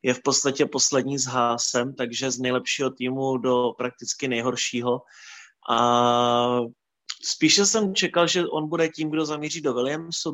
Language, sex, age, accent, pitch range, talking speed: Czech, male, 30-49, native, 130-150 Hz, 145 wpm